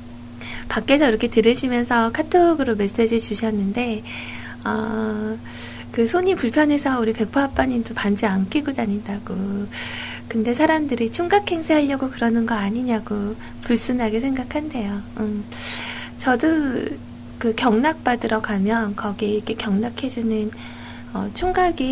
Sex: female